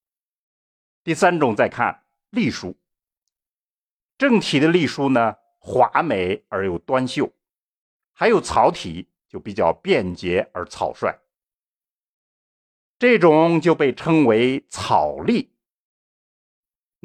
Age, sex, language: 50-69, male, Chinese